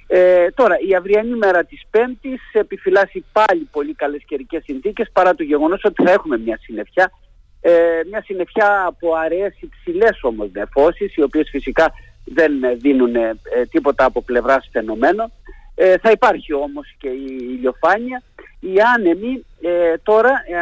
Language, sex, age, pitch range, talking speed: Greek, male, 50-69, 155-230 Hz, 150 wpm